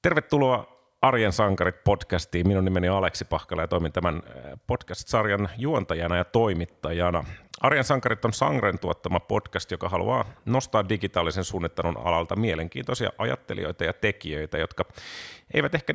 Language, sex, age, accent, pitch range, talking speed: Finnish, male, 30-49, native, 90-115 Hz, 130 wpm